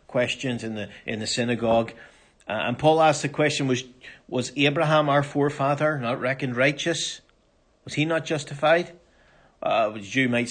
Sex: male